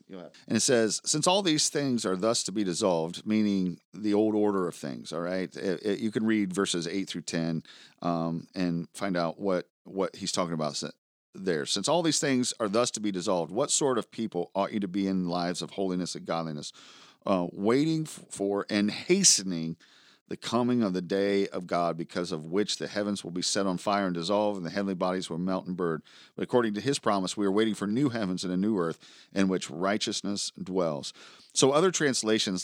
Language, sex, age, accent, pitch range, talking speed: English, male, 40-59, American, 90-115 Hz, 210 wpm